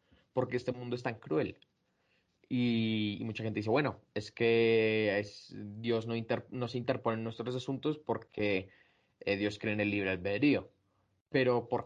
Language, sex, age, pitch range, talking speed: Spanish, male, 20-39, 105-130 Hz, 170 wpm